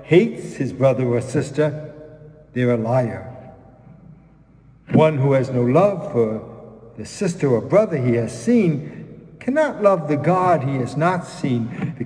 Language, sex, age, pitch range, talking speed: English, male, 60-79, 125-160 Hz, 150 wpm